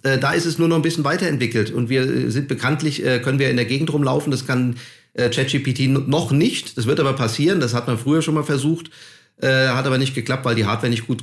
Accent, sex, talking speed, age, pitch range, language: German, male, 230 wpm, 30-49, 120-155 Hz, German